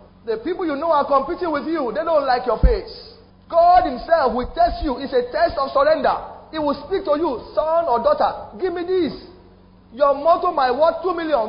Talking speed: 210 wpm